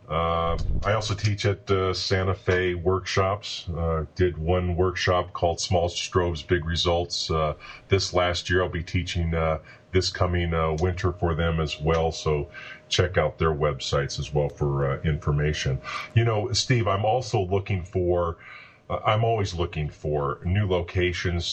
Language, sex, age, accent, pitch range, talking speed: English, male, 40-59, American, 85-100 Hz, 160 wpm